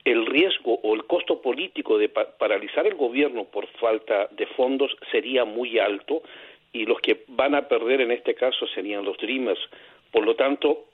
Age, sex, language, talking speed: 50-69, male, Spanish, 175 wpm